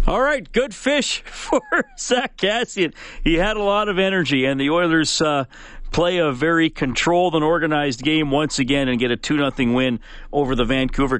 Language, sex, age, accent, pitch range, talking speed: English, male, 40-59, American, 125-170 Hz, 175 wpm